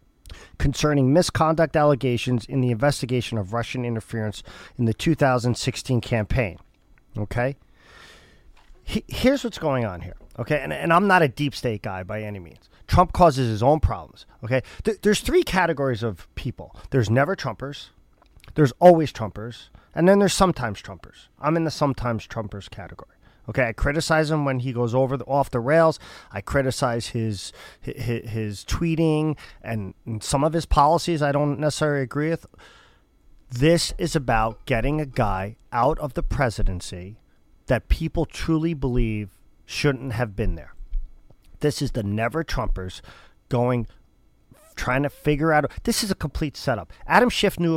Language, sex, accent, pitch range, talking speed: English, male, American, 110-150 Hz, 155 wpm